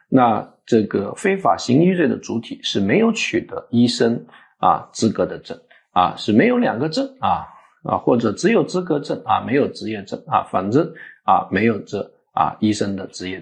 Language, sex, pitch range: Chinese, male, 125-195 Hz